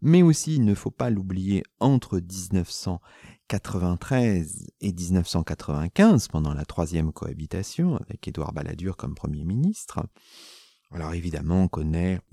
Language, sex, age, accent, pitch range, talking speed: French, male, 40-59, French, 95-135 Hz, 120 wpm